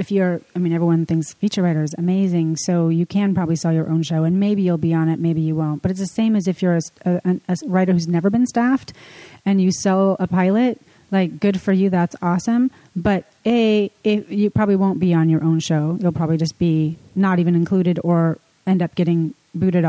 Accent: American